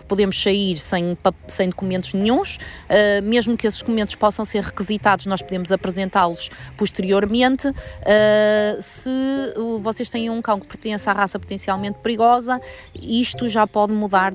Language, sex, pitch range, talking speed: Portuguese, female, 185-210 Hz, 145 wpm